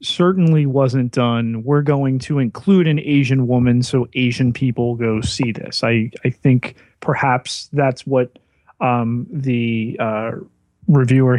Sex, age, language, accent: male, 30-49, English, American